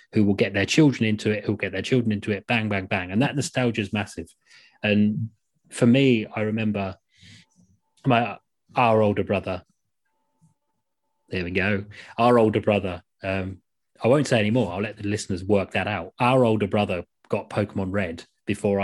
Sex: male